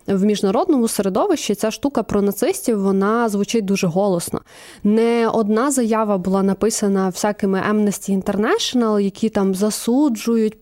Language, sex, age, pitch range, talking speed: Ukrainian, female, 20-39, 200-235 Hz, 125 wpm